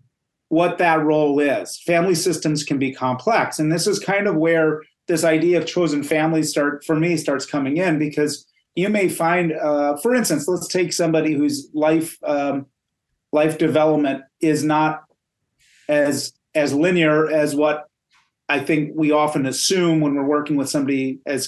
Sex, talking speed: male, 165 wpm